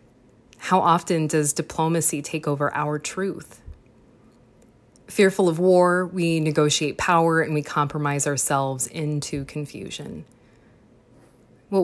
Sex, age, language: female, 20-39, English